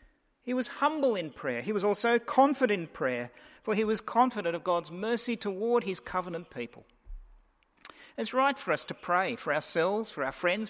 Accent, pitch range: Australian, 170-230 Hz